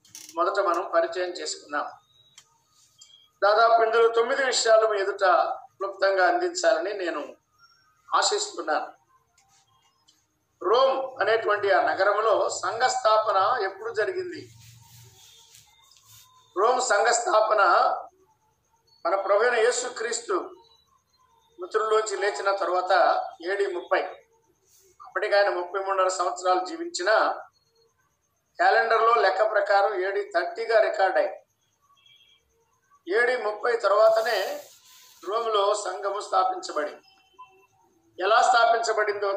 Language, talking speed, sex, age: Telugu, 80 wpm, male, 50-69